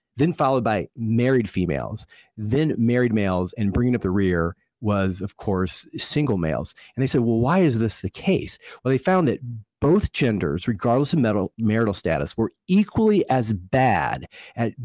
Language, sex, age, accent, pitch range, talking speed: English, male, 40-59, American, 105-135 Hz, 170 wpm